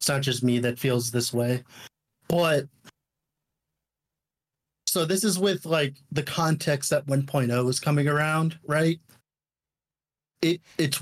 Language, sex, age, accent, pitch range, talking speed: English, male, 30-49, American, 130-160 Hz, 130 wpm